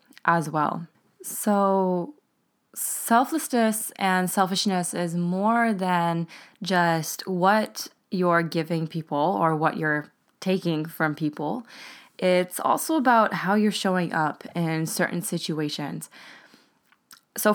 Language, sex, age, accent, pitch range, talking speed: English, female, 10-29, American, 165-205 Hz, 105 wpm